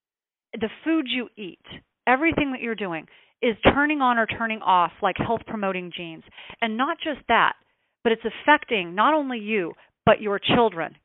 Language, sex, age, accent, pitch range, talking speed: English, female, 40-59, American, 210-280 Hz, 165 wpm